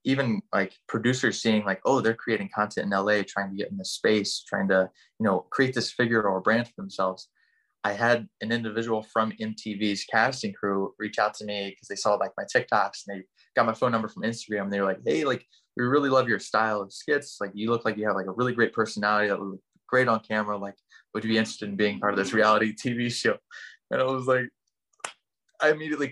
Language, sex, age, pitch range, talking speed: English, male, 20-39, 105-130 Hz, 235 wpm